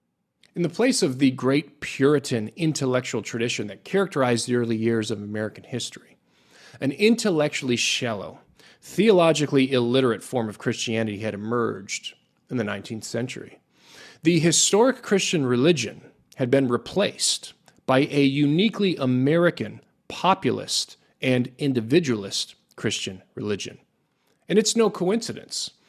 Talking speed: 120 wpm